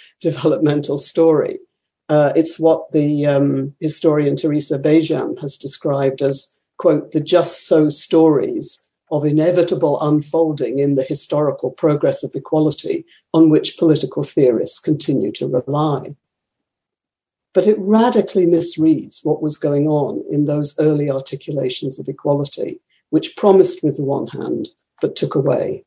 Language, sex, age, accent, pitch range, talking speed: English, female, 60-79, British, 145-190 Hz, 130 wpm